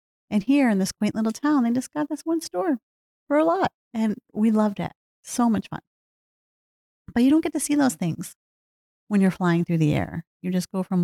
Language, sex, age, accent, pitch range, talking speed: English, female, 30-49, American, 170-225 Hz, 225 wpm